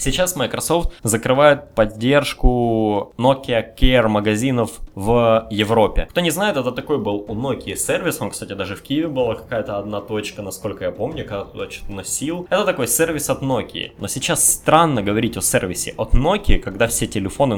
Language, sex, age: Russian, male, 20-39